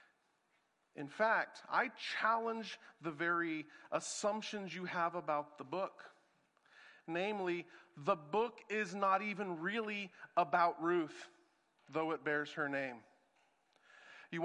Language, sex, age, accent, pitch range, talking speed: English, male, 40-59, American, 195-270 Hz, 110 wpm